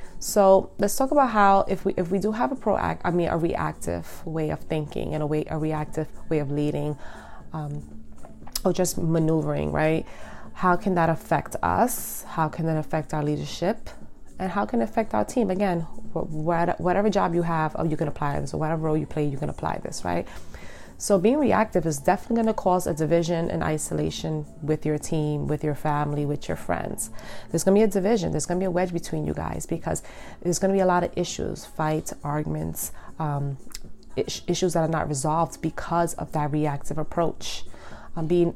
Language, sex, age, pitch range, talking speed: English, female, 30-49, 150-175 Hz, 205 wpm